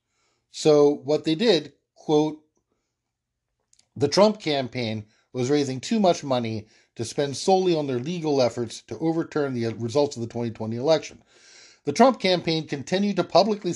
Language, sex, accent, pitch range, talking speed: English, male, American, 120-160 Hz, 150 wpm